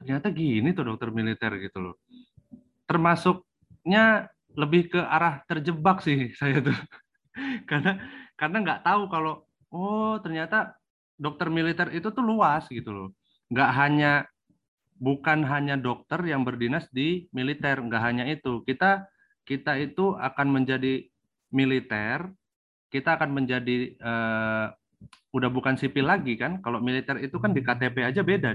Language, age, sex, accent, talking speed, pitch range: Indonesian, 30-49, male, native, 135 wpm, 120-165 Hz